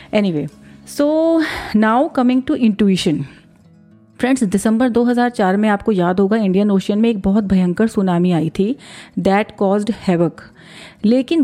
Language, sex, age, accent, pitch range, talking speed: Hindi, female, 40-59, native, 190-230 Hz, 135 wpm